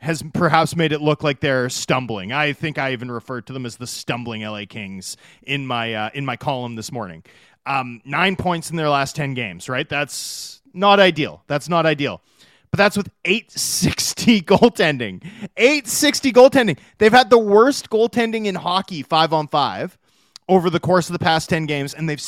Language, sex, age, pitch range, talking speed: English, male, 30-49, 145-210 Hz, 195 wpm